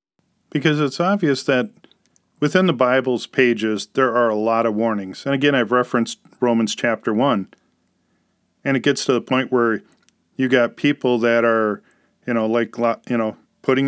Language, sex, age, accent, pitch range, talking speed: English, male, 40-59, American, 115-140 Hz, 170 wpm